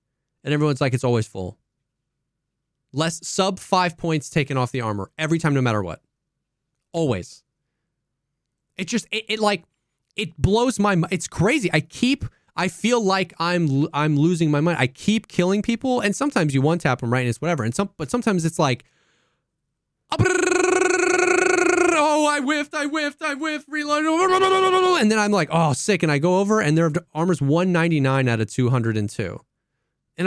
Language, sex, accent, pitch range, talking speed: English, male, American, 140-195 Hz, 185 wpm